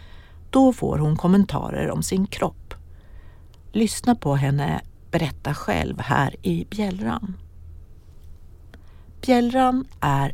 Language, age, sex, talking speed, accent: Swedish, 60-79, female, 100 wpm, native